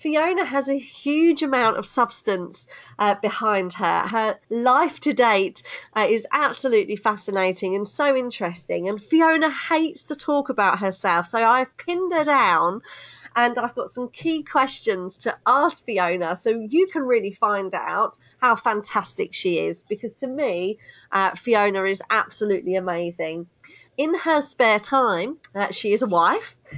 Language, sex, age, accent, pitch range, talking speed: English, female, 30-49, British, 195-275 Hz, 155 wpm